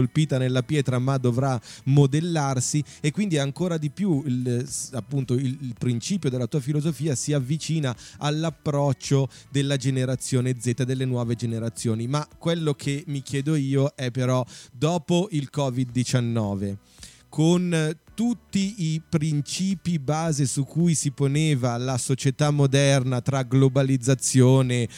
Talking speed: 125 wpm